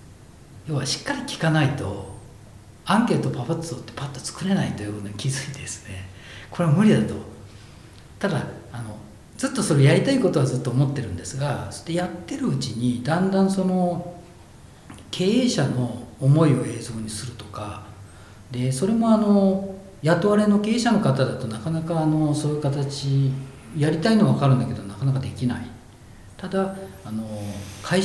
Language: Japanese